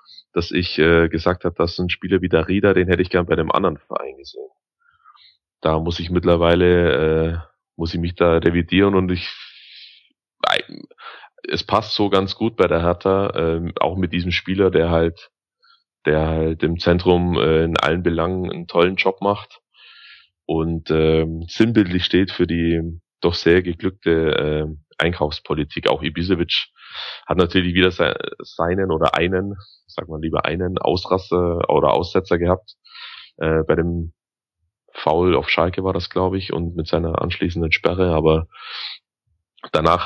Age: 30-49